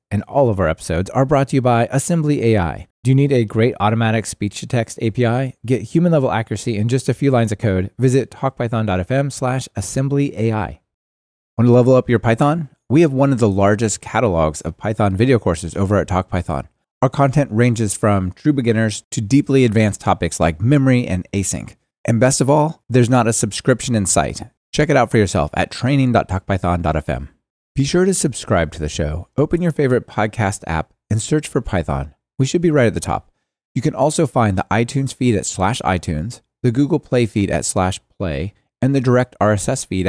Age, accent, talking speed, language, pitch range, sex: 30-49, American, 195 wpm, English, 95-135 Hz, male